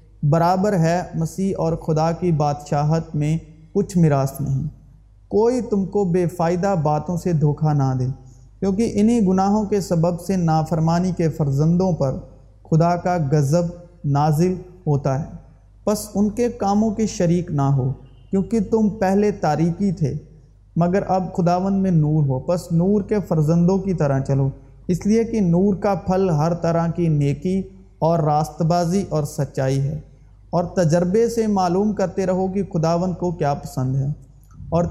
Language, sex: Urdu, male